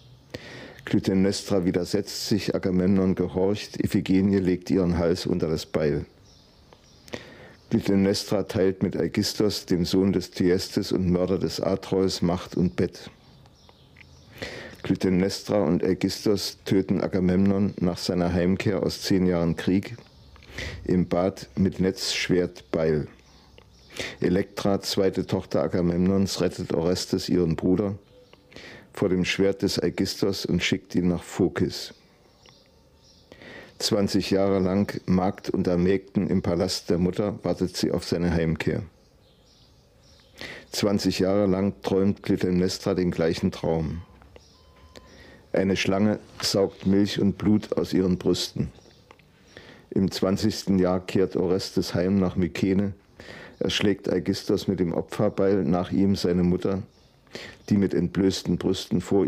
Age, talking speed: 50-69, 120 wpm